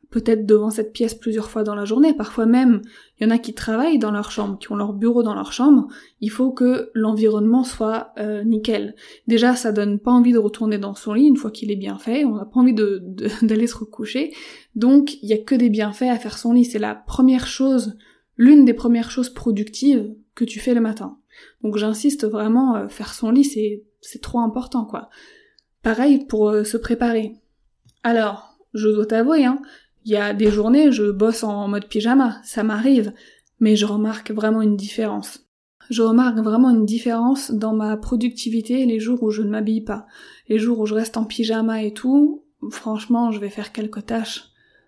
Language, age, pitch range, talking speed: French, 20-39, 215-245 Hz, 200 wpm